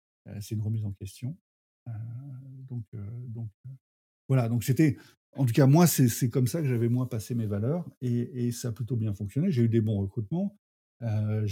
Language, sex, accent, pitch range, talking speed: French, male, French, 105-125 Hz, 210 wpm